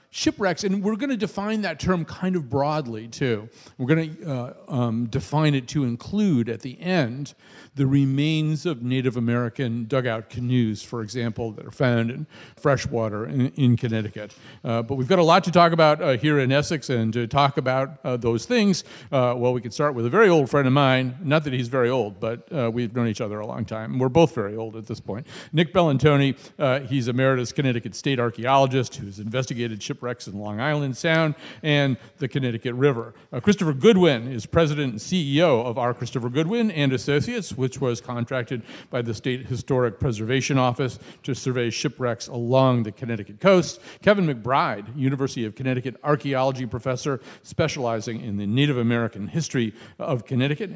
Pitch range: 120-155 Hz